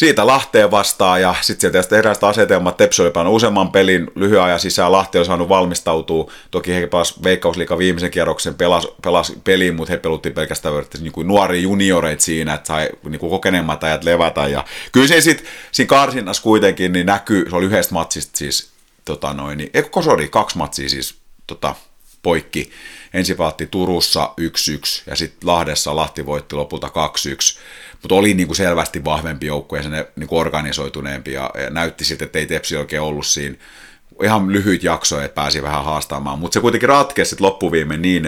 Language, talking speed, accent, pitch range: Finnish, 170 wpm, native, 75-90 Hz